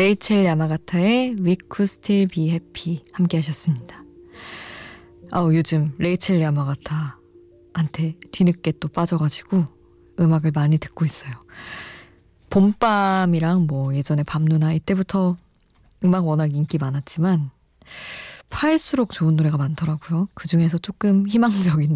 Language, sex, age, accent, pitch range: Korean, female, 20-39, native, 155-205 Hz